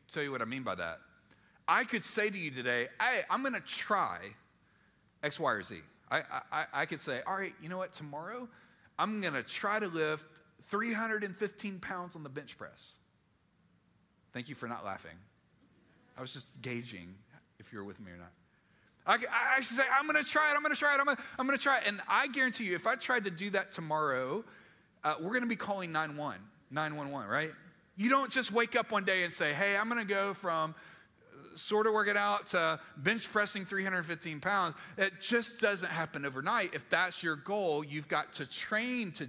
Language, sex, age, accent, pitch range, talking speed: English, male, 40-59, American, 150-205 Hz, 215 wpm